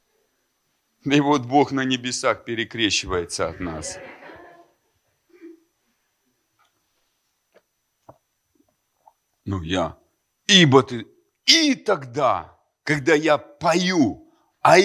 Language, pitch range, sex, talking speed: Russian, 105-150 Hz, male, 75 wpm